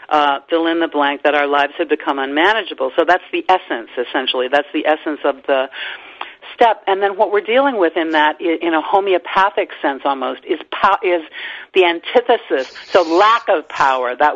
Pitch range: 150-190 Hz